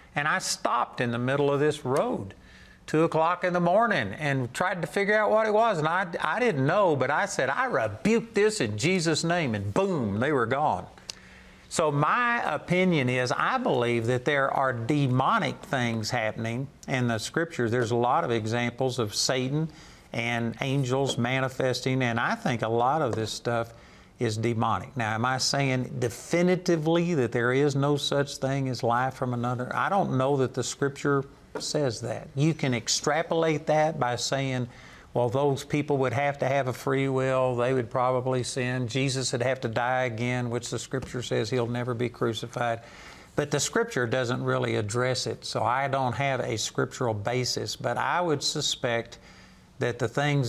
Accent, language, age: American, English, 50-69